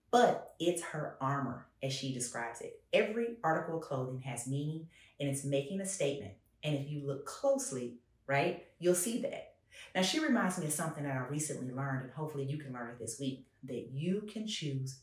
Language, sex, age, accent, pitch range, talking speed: English, female, 30-49, American, 130-170 Hz, 200 wpm